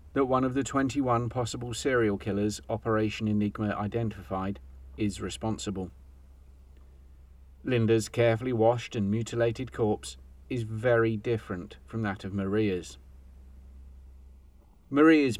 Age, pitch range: 40-59, 80-115 Hz